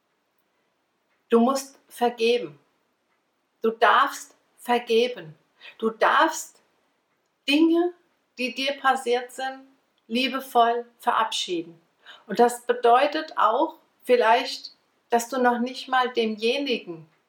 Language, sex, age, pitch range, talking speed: German, female, 60-79, 185-235 Hz, 90 wpm